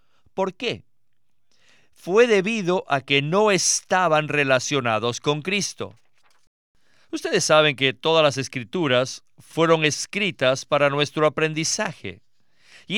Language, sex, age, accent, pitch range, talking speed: Spanish, male, 50-69, Mexican, 130-185 Hz, 105 wpm